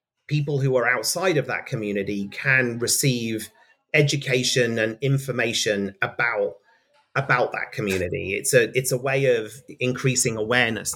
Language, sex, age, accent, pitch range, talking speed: English, male, 30-49, British, 125-155 Hz, 130 wpm